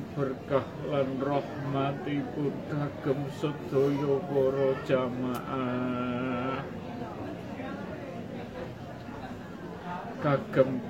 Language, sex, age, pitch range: Indonesian, male, 50-69, 125-140 Hz